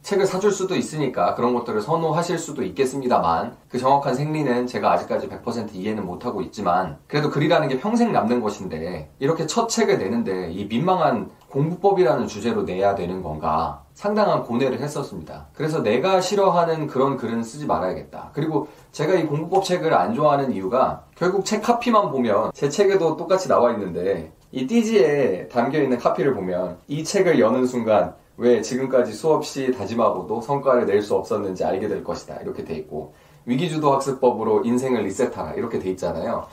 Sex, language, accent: male, Korean, native